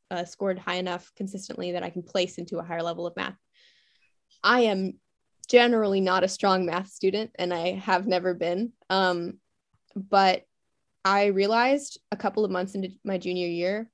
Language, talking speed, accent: English, 170 wpm, American